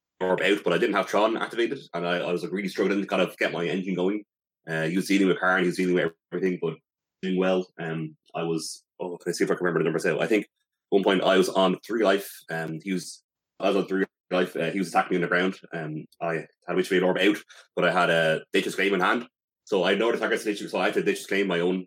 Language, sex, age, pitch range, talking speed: English, male, 30-49, 85-100 Hz, 290 wpm